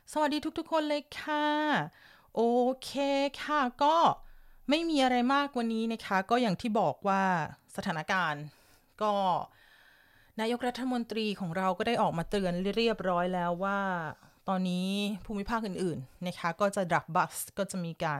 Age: 30-49